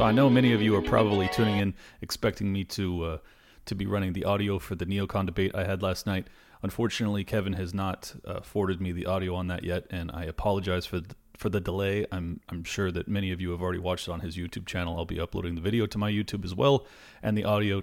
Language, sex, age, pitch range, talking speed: English, male, 30-49, 95-110 Hz, 250 wpm